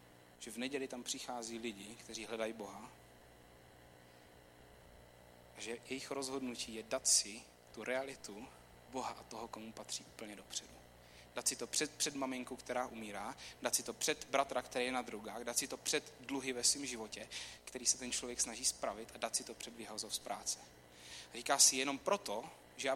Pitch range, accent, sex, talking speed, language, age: 105-170 Hz, native, male, 185 wpm, Czech, 30-49